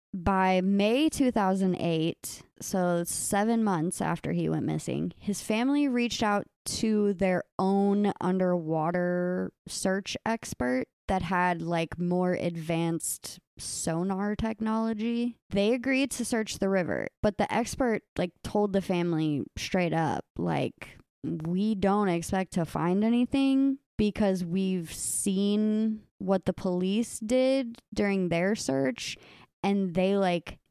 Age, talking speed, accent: 20-39, 120 wpm, American